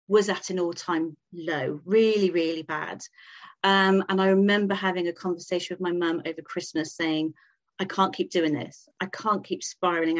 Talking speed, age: 180 wpm, 40-59